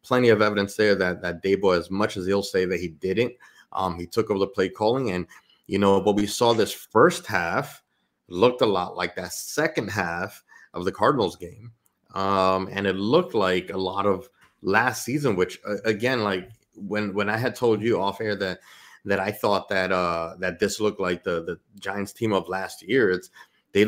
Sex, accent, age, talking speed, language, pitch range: male, American, 30-49, 210 wpm, English, 90-110 Hz